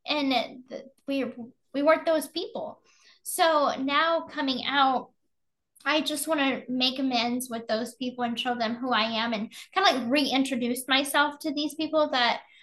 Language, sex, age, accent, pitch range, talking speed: English, female, 10-29, American, 230-275 Hz, 165 wpm